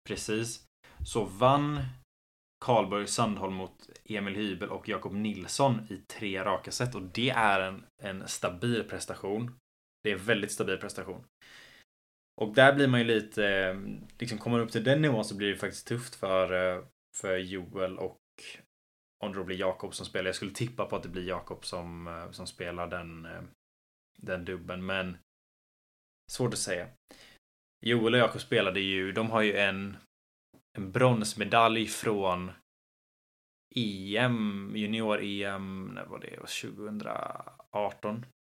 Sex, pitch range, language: male, 90-115 Hz, Swedish